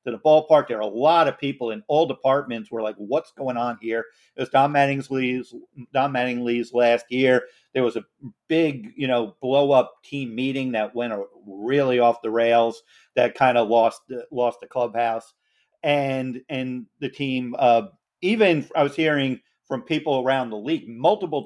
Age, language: 50-69, English